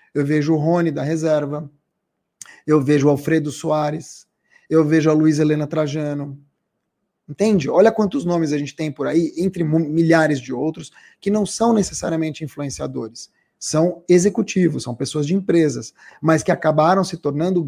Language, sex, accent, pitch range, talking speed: Portuguese, male, Brazilian, 155-185 Hz, 155 wpm